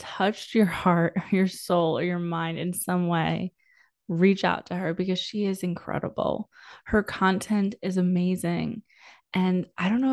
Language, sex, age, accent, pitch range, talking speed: English, female, 20-39, American, 175-205 Hz, 160 wpm